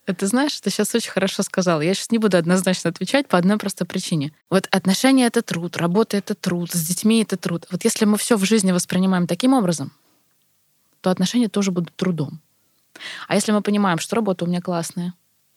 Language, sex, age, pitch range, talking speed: Russian, female, 20-39, 170-205 Hz, 195 wpm